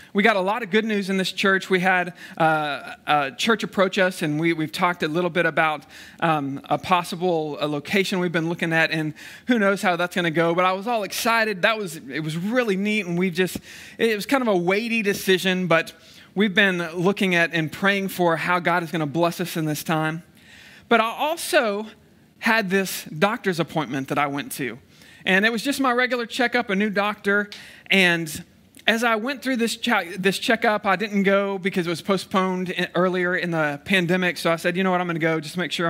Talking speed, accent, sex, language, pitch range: 225 wpm, American, male, English, 170-210 Hz